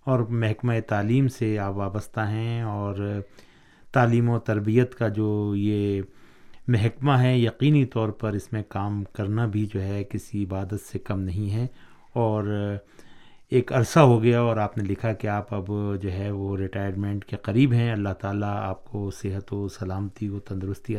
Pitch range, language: 105-120 Hz, Urdu